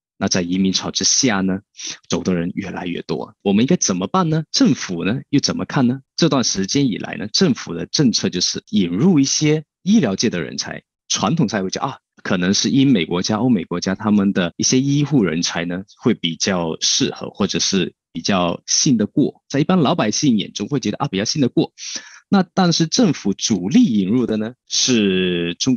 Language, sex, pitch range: Chinese, male, 95-145 Hz